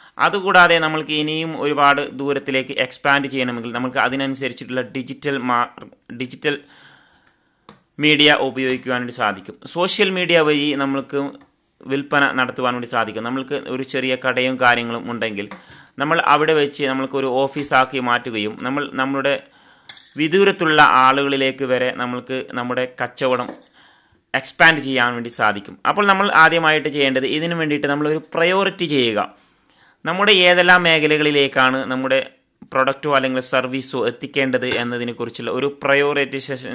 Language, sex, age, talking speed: Malayalam, male, 30-49, 115 wpm